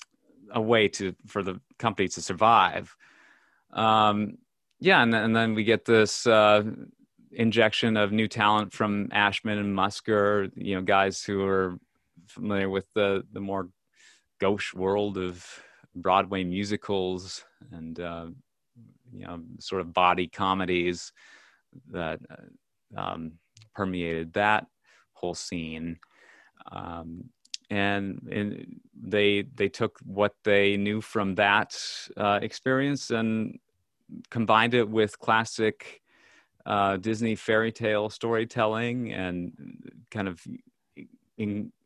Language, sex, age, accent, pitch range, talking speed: English, male, 30-49, American, 95-110 Hz, 115 wpm